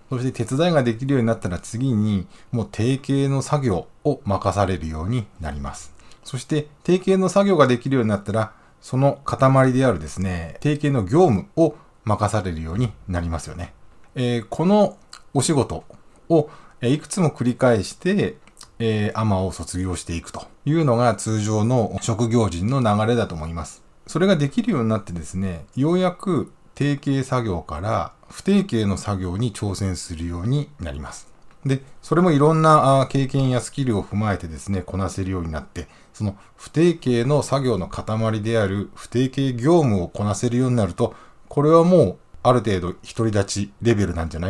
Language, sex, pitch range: Japanese, male, 95-135 Hz